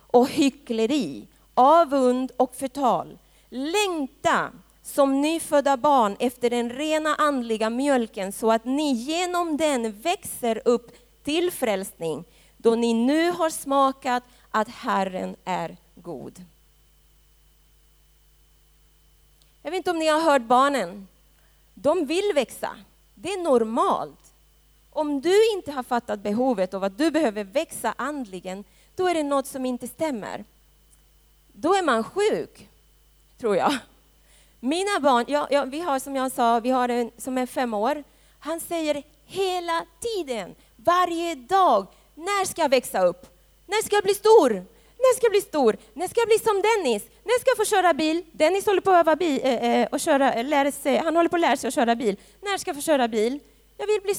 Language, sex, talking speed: Swedish, female, 165 wpm